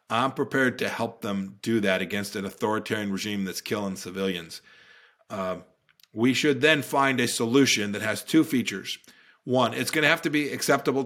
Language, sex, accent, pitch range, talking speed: English, male, American, 110-135 Hz, 180 wpm